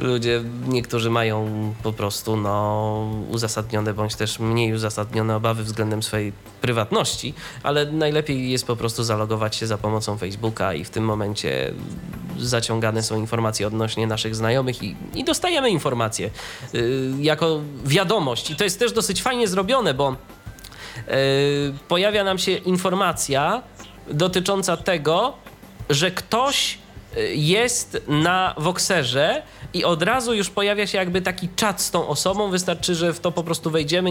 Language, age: Polish, 20-39